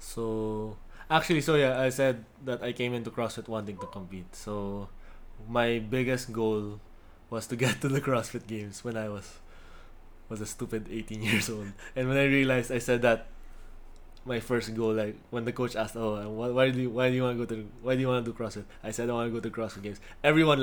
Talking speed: 220 wpm